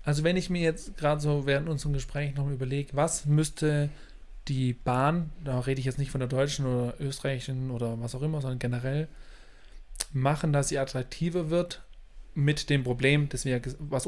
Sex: male